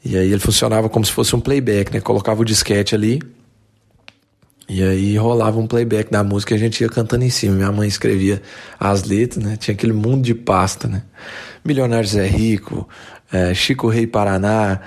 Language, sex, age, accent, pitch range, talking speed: Portuguese, male, 20-39, Brazilian, 100-120 Hz, 185 wpm